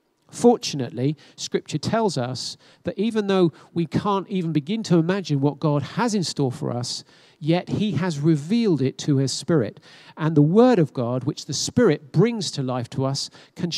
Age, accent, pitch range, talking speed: 50-69, British, 145-195 Hz, 185 wpm